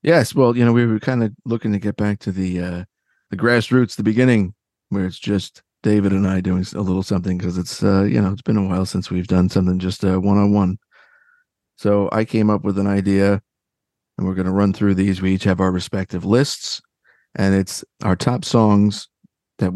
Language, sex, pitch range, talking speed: English, male, 95-105 Hz, 215 wpm